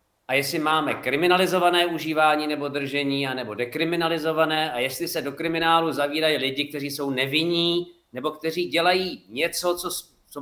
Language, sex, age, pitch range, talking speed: Slovak, male, 50-69, 140-185 Hz, 140 wpm